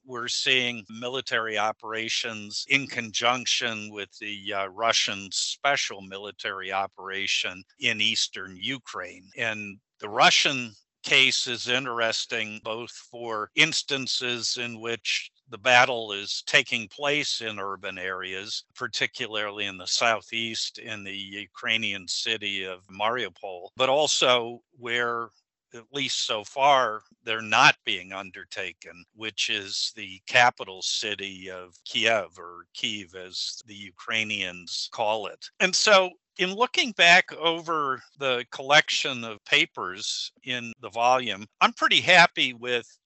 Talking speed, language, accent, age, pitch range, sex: 120 wpm, English, American, 50-69, 100-125 Hz, male